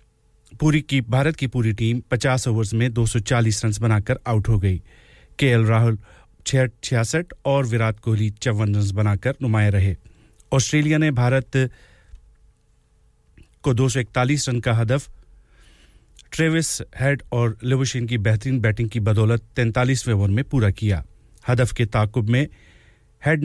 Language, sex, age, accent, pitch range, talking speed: English, male, 40-59, Indian, 110-130 Hz, 135 wpm